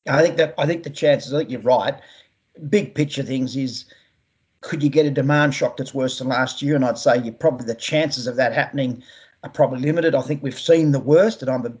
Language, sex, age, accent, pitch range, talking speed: English, male, 40-59, Australian, 130-150 Hz, 245 wpm